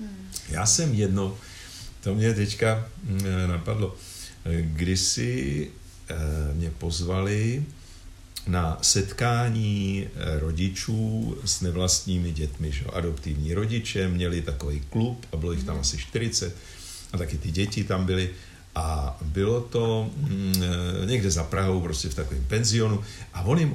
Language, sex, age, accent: Czech, male, 50-69, native